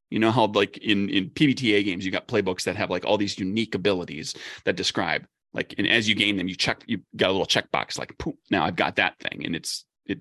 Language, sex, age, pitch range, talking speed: English, male, 30-49, 95-115 Hz, 255 wpm